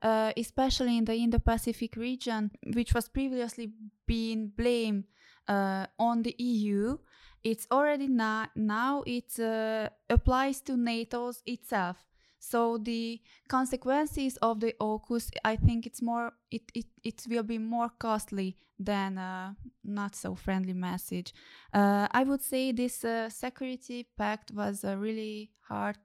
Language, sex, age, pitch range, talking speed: English, female, 20-39, 200-240 Hz, 135 wpm